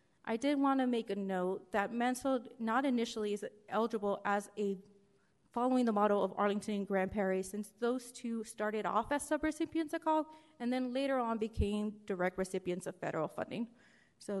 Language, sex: English, female